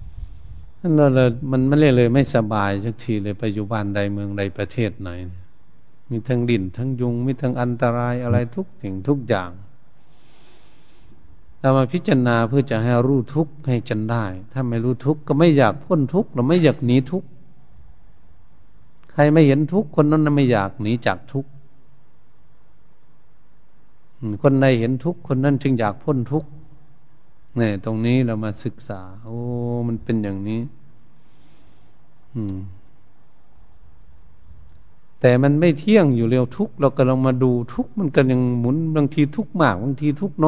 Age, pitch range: 70-89, 100-140 Hz